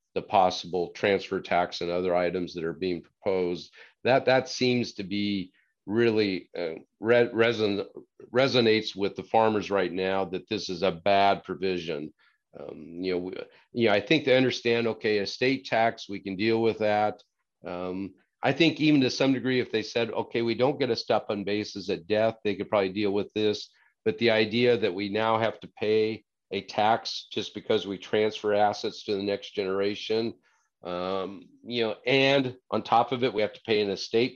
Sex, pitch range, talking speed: male, 95-115 Hz, 190 wpm